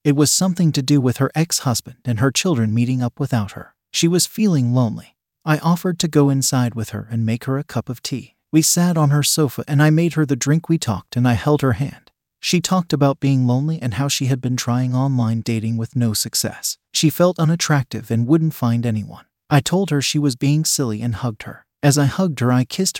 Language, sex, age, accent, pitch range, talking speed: English, male, 40-59, American, 120-155 Hz, 235 wpm